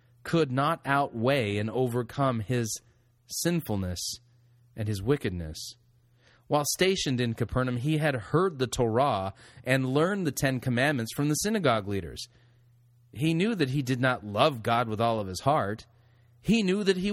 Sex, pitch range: male, 115-140 Hz